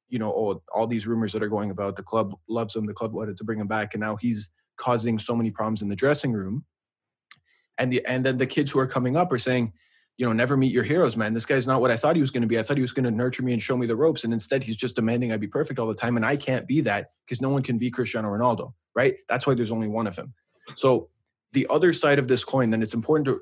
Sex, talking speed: male, 295 wpm